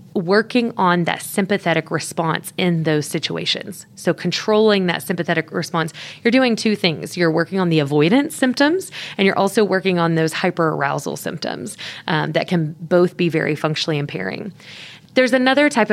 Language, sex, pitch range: English, female, 165-205 Hz